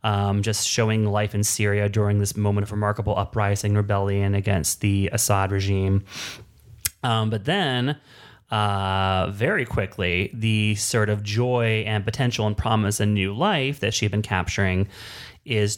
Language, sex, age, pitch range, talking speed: English, male, 30-49, 100-110 Hz, 150 wpm